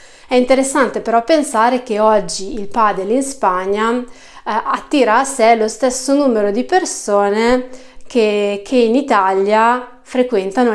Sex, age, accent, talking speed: female, 30-49, native, 135 wpm